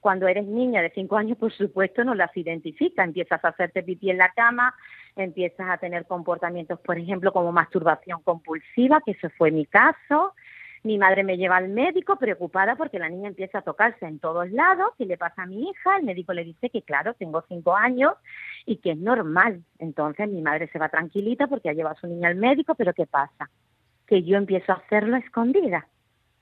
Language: Spanish